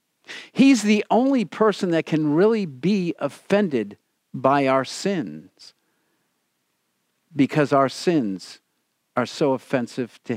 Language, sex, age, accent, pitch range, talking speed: English, male, 50-69, American, 140-205 Hz, 110 wpm